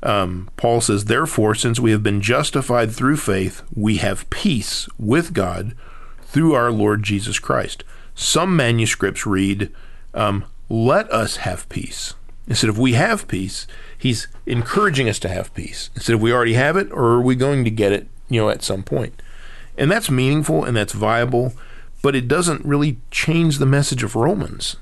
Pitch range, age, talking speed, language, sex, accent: 105-130 Hz, 40-59, 175 wpm, English, male, American